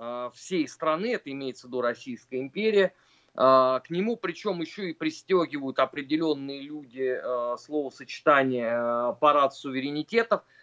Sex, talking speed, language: male, 105 wpm, Russian